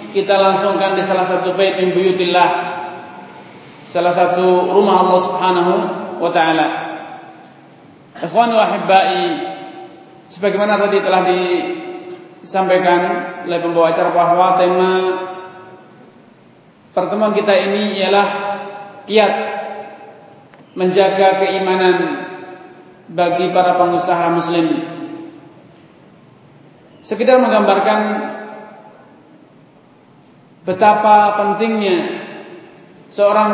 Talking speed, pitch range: 70 wpm, 185-225 Hz